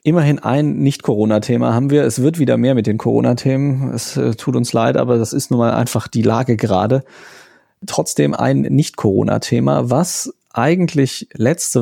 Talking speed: 160 wpm